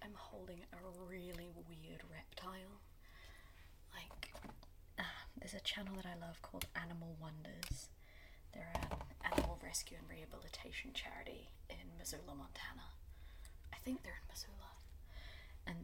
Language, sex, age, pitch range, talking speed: English, female, 20-39, 80-130 Hz, 125 wpm